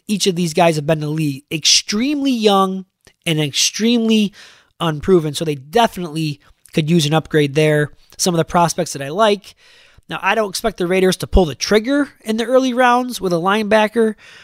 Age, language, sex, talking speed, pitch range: 20-39, English, male, 185 wpm, 165-220 Hz